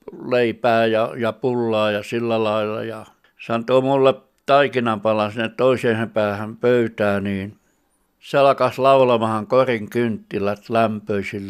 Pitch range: 110-125 Hz